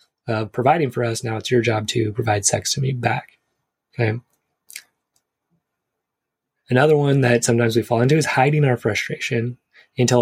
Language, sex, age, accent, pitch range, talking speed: English, male, 20-39, American, 120-145 Hz, 160 wpm